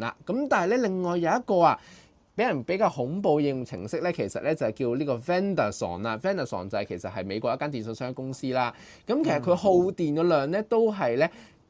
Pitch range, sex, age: 120-175 Hz, male, 20-39